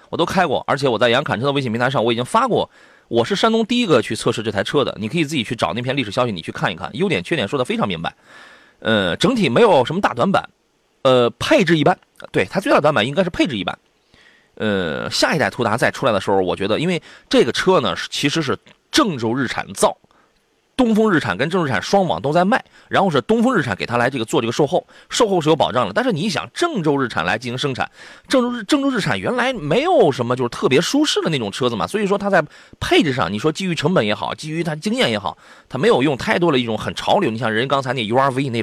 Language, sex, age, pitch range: Chinese, male, 30-49, 120-200 Hz